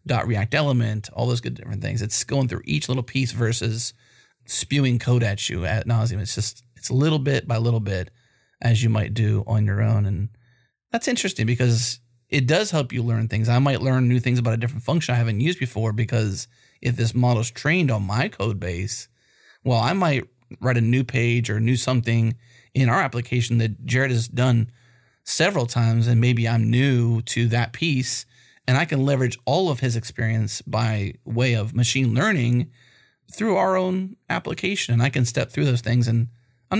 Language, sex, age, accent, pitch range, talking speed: English, male, 30-49, American, 115-130 Hz, 195 wpm